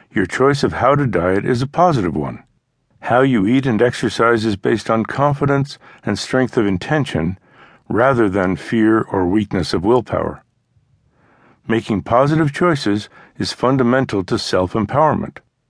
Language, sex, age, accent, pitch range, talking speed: English, male, 60-79, American, 105-140 Hz, 140 wpm